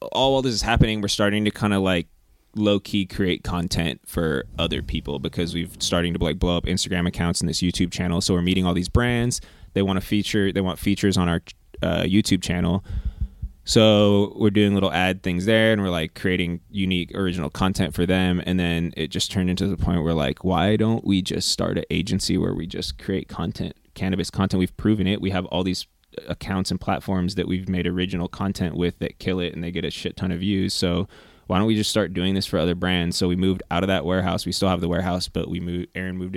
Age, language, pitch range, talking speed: 20-39, English, 85-100 Hz, 235 wpm